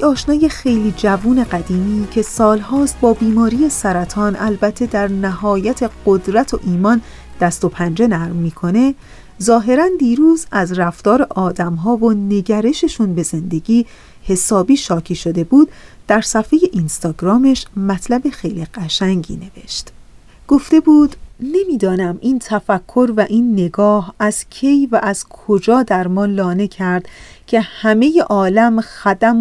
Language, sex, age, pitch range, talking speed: Persian, female, 30-49, 190-240 Hz, 125 wpm